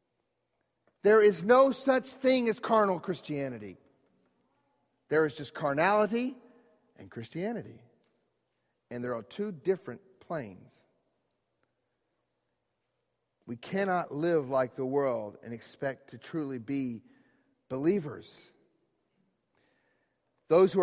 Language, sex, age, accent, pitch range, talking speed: English, male, 40-59, American, 140-225 Hz, 100 wpm